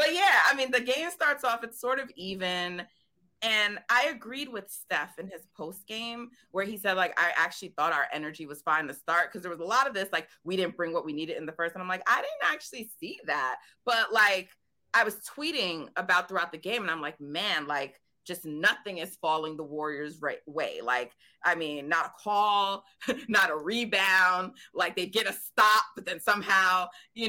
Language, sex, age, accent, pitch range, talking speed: English, female, 30-49, American, 160-210 Hz, 220 wpm